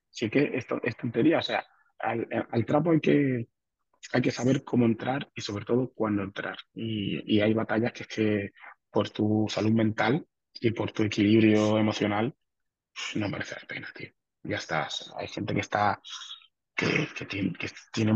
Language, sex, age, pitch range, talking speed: Spanish, male, 20-39, 105-115 Hz, 180 wpm